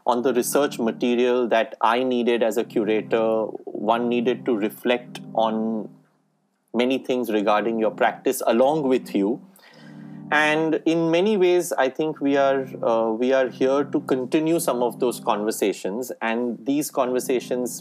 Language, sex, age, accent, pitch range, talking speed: English, male, 30-49, Indian, 110-150 Hz, 150 wpm